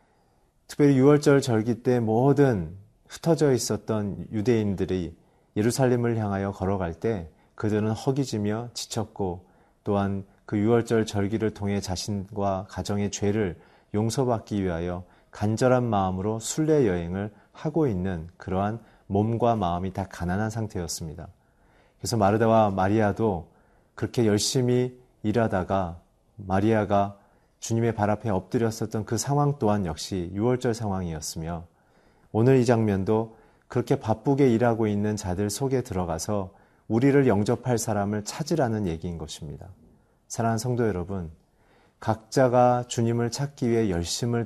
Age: 40-59